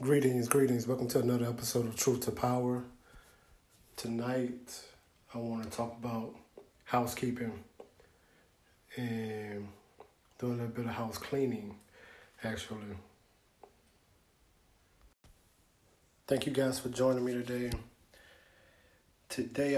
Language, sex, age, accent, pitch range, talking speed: English, male, 20-39, American, 110-130 Hz, 100 wpm